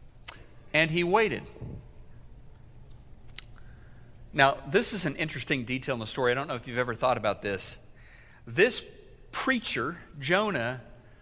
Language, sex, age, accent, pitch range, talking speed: English, male, 50-69, American, 150-215 Hz, 130 wpm